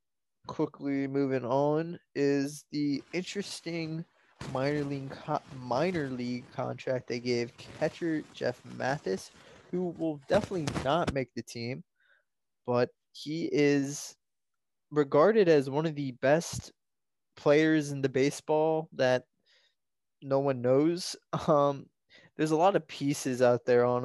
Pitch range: 125-150 Hz